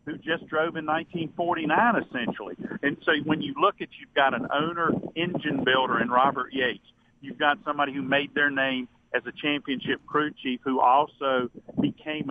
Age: 50-69